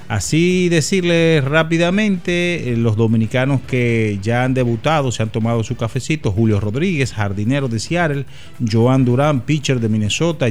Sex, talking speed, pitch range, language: male, 135 wpm, 110-140 Hz, Spanish